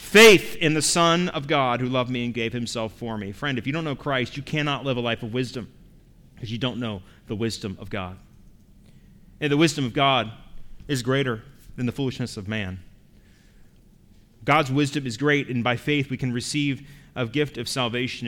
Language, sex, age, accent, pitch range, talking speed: English, male, 30-49, American, 110-140 Hz, 200 wpm